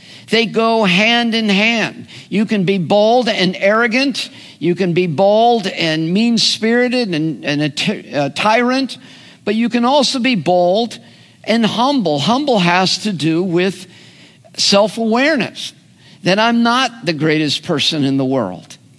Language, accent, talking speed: English, American, 140 wpm